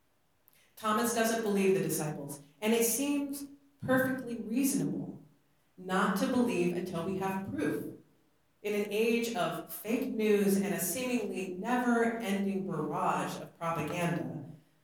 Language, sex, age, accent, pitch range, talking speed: English, female, 40-59, American, 175-235 Hz, 120 wpm